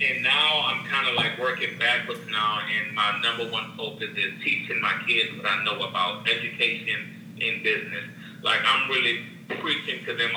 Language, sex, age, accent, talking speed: English, male, 40-59, American, 180 wpm